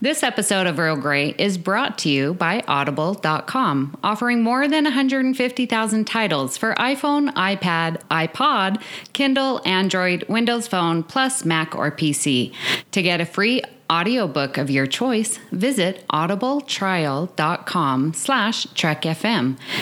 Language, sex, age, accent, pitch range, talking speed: English, female, 30-49, American, 155-225 Hz, 115 wpm